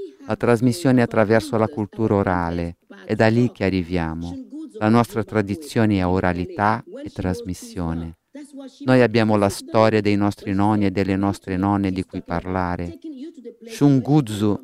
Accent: native